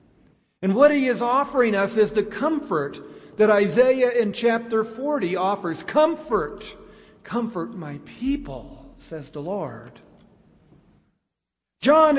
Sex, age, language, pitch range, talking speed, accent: male, 50-69, English, 165-240 Hz, 115 wpm, American